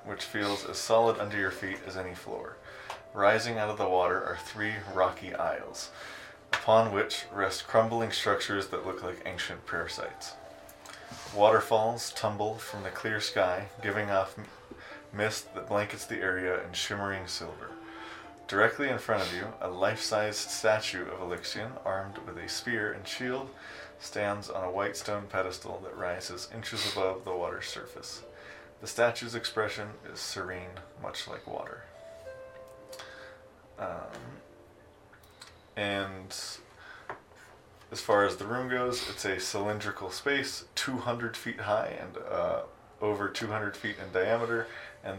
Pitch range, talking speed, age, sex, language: 95-110 Hz, 140 wpm, 20-39, male, English